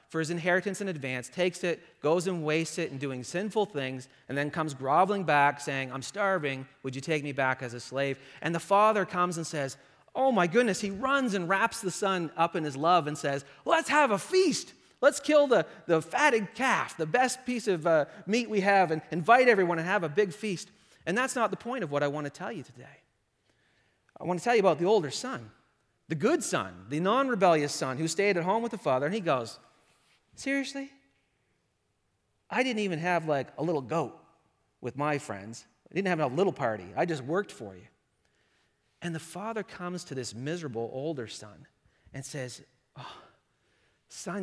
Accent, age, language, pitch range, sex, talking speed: American, 30-49, English, 140-200 Hz, male, 205 wpm